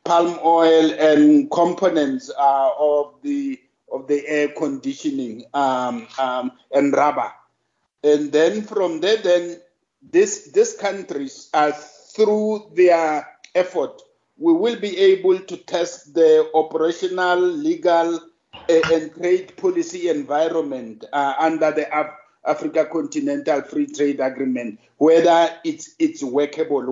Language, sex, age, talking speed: English, male, 50-69, 120 wpm